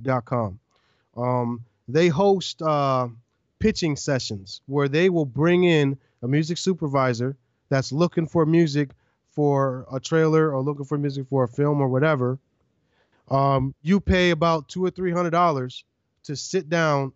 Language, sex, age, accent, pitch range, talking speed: English, male, 30-49, American, 125-160 Hz, 155 wpm